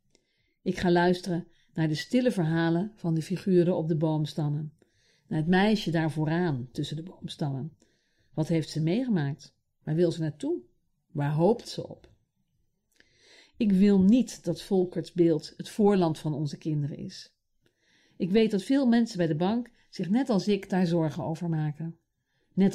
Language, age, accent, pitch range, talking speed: Dutch, 50-69, Dutch, 155-195 Hz, 165 wpm